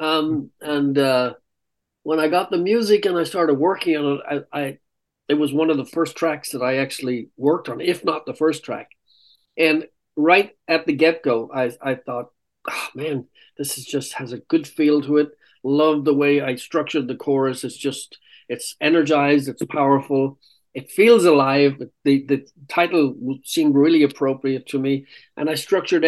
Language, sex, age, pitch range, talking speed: English, male, 50-69, 135-155 Hz, 185 wpm